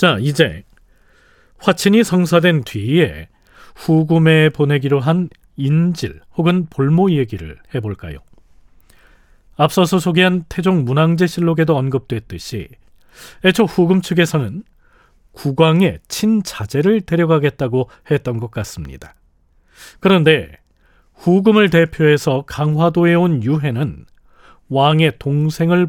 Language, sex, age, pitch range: Korean, male, 40-59, 125-175 Hz